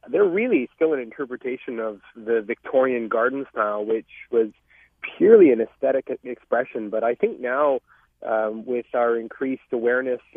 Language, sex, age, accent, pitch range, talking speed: English, male, 40-59, American, 120-160 Hz, 145 wpm